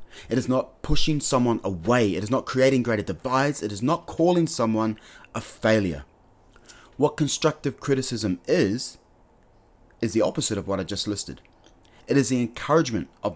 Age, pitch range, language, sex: 30-49, 95-130 Hz, English, male